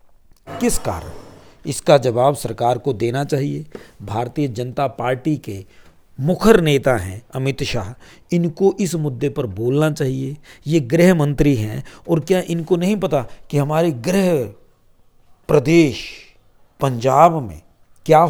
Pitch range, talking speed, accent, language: 130-170 Hz, 130 wpm, native, Hindi